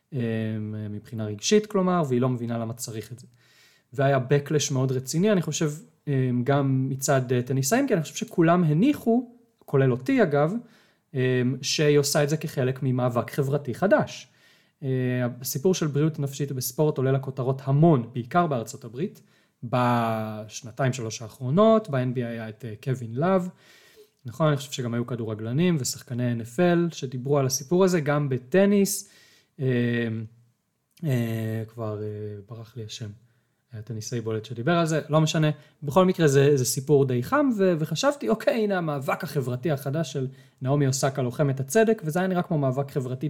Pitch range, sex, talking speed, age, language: 120-160 Hz, male, 145 wpm, 30-49, Hebrew